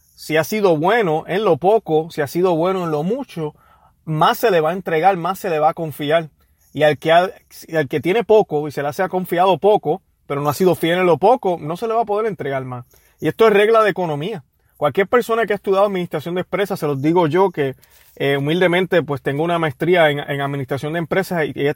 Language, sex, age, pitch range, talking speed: Spanish, male, 30-49, 145-185 Hz, 240 wpm